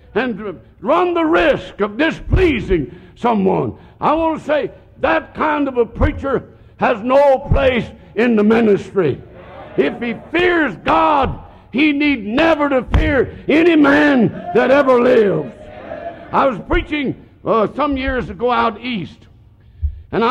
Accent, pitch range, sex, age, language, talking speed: American, 175-270 Hz, male, 60-79, English, 140 wpm